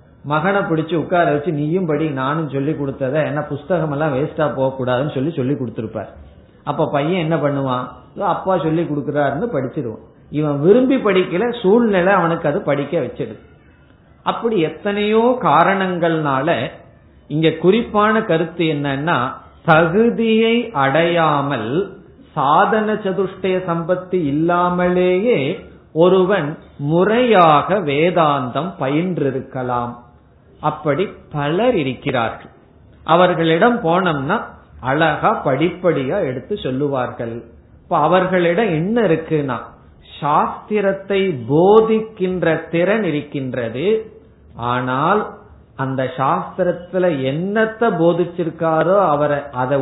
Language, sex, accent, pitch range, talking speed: Tamil, male, native, 140-185 Hz, 75 wpm